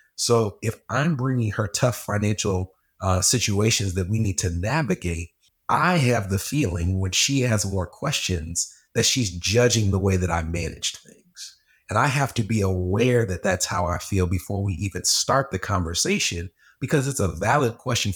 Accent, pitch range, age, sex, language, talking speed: American, 90-115 Hz, 30-49, male, English, 180 wpm